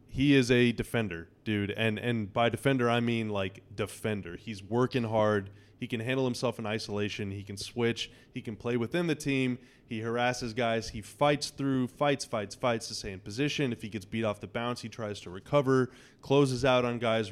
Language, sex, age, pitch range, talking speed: English, male, 20-39, 105-130 Hz, 205 wpm